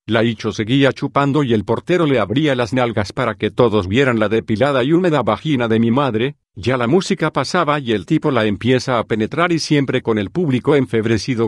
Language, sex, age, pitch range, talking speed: English, male, 50-69, 110-130 Hz, 210 wpm